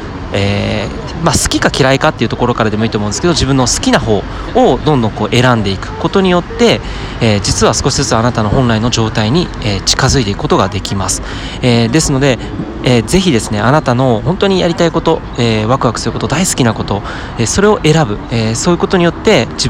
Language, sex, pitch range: Japanese, male, 110-145 Hz